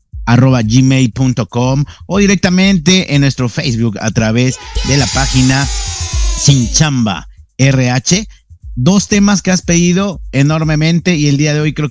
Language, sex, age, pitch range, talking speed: Spanish, male, 50-69, 115-150 Hz, 135 wpm